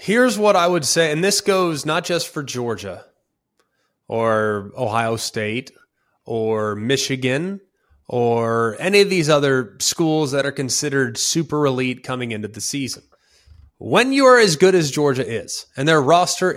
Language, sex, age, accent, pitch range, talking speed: English, male, 30-49, American, 130-185 Hz, 155 wpm